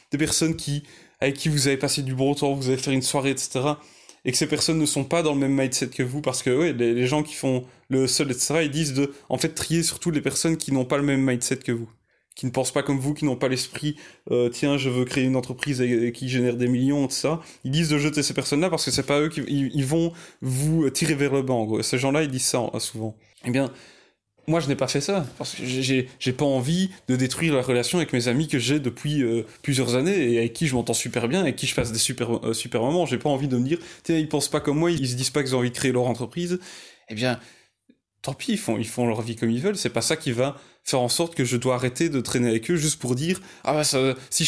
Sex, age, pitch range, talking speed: male, 20-39, 125-150 Hz, 285 wpm